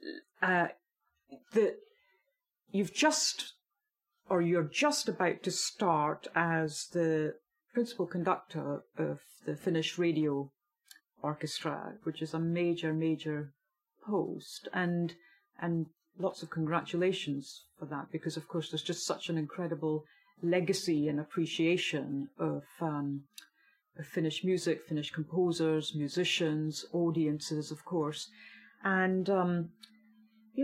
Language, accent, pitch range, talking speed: English, British, 160-195 Hz, 110 wpm